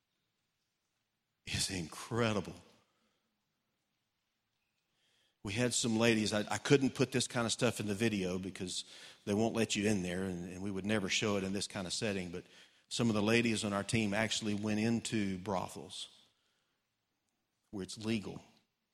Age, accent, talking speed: 40-59, American, 160 wpm